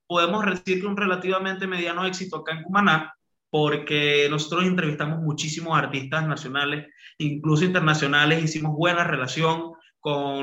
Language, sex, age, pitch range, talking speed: Spanish, male, 20-39, 140-160 Hz, 120 wpm